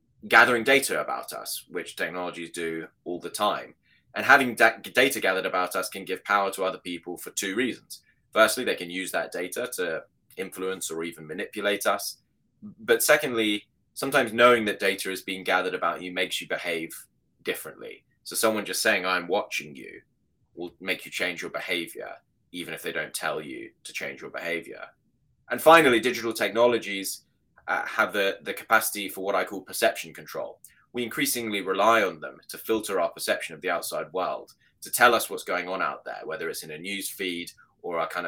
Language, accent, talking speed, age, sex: English, British, 190 wpm, 20-39, male